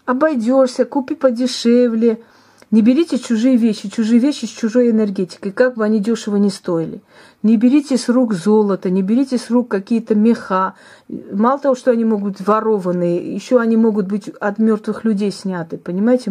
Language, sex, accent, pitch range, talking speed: Russian, female, native, 195-240 Hz, 165 wpm